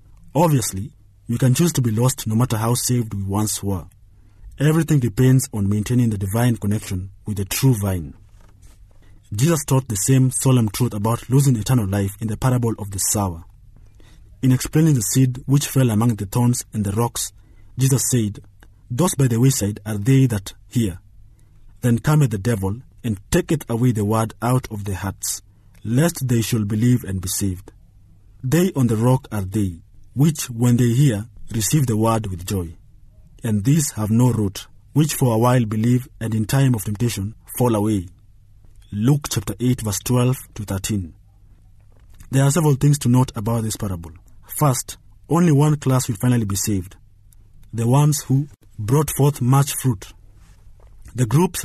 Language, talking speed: English, 170 wpm